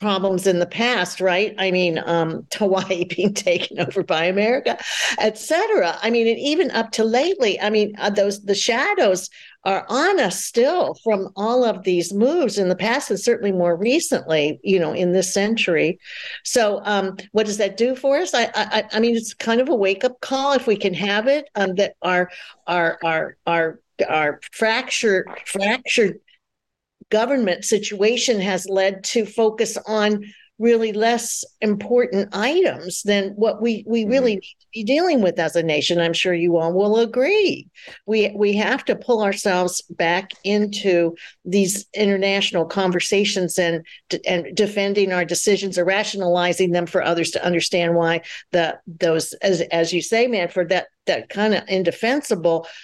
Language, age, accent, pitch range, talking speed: English, 50-69, American, 180-225 Hz, 170 wpm